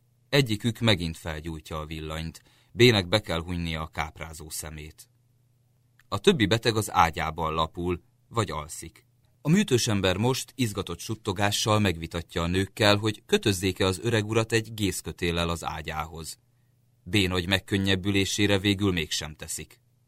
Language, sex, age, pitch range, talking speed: Hungarian, male, 30-49, 85-120 Hz, 130 wpm